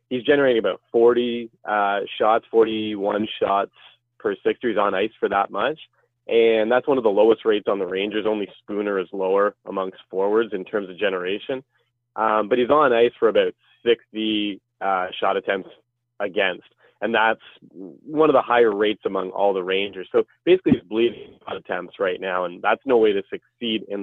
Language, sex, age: English, male, 20-39